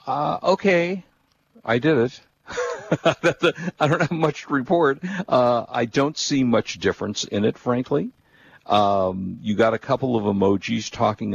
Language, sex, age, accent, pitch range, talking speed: English, male, 50-69, American, 105-135 Hz, 160 wpm